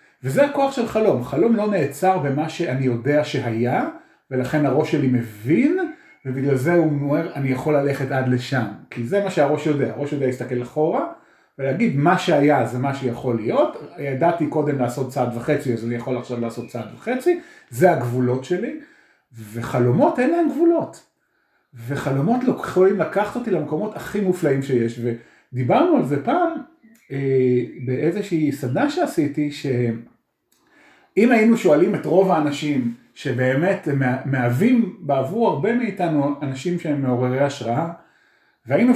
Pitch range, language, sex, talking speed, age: 130-205 Hz, Hebrew, male, 140 wpm, 40-59